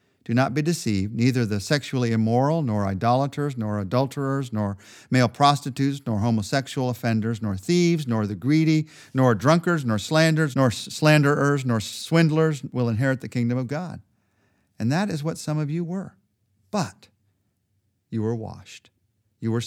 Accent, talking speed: American, 155 wpm